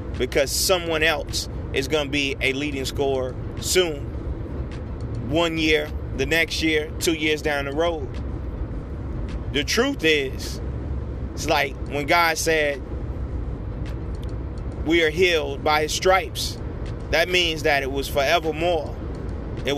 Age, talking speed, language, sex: 30-49, 125 wpm, English, male